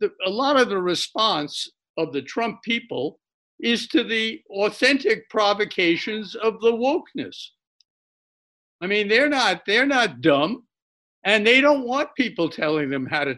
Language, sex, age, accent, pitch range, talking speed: English, male, 60-79, American, 175-230 Hz, 150 wpm